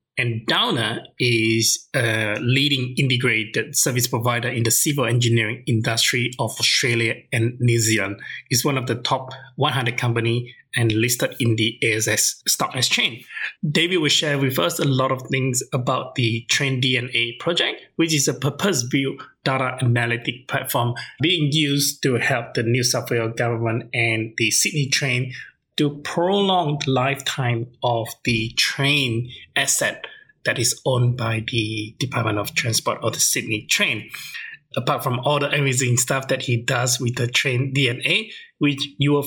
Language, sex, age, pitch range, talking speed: English, male, 20-39, 120-145 Hz, 155 wpm